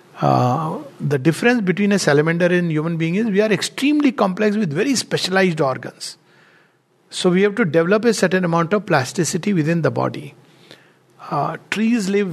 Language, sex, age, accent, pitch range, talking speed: English, male, 60-79, Indian, 150-190 Hz, 165 wpm